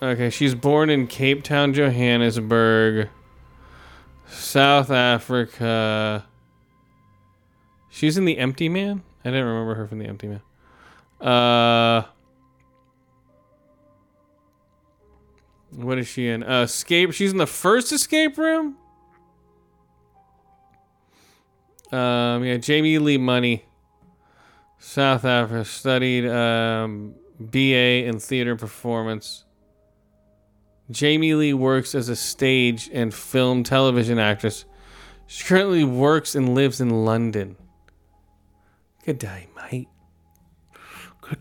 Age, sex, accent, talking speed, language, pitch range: 20-39, male, American, 100 wpm, English, 100-135 Hz